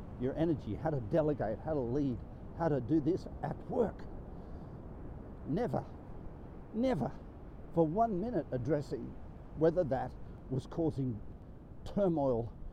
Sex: male